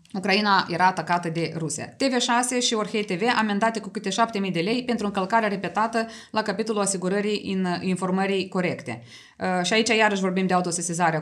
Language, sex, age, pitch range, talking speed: Romanian, female, 20-39, 195-255 Hz, 160 wpm